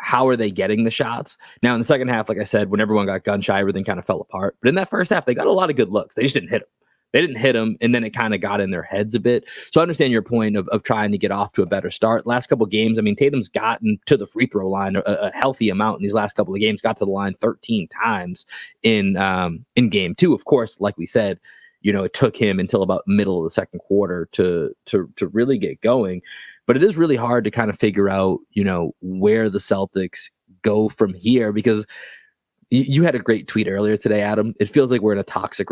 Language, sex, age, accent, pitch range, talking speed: English, male, 20-39, American, 100-120 Hz, 270 wpm